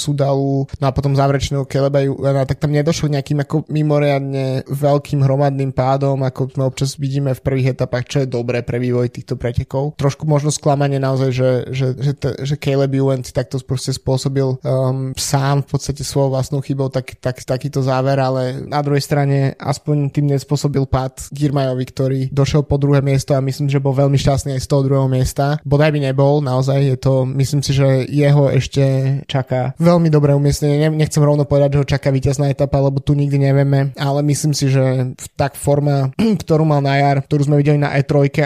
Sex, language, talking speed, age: male, Slovak, 180 wpm, 20-39